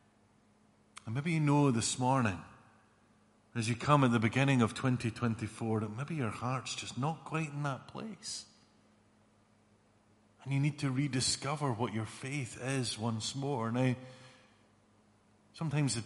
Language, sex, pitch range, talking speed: English, male, 105-140 Hz, 140 wpm